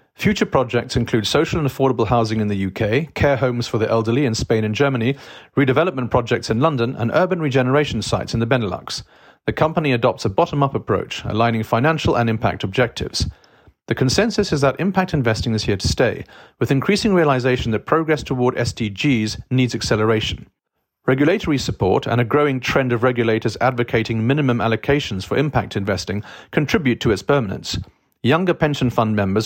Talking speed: 165 wpm